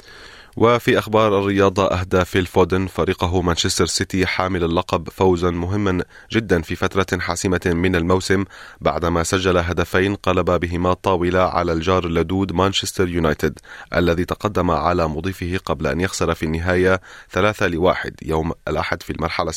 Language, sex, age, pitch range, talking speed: Arabic, male, 30-49, 85-100 Hz, 135 wpm